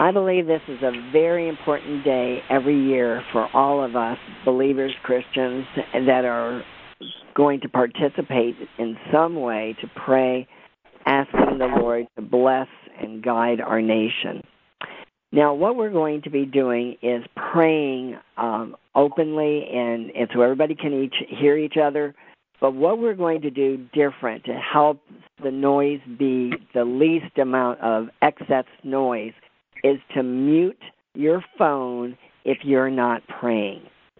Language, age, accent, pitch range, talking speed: English, 50-69, American, 125-150 Hz, 145 wpm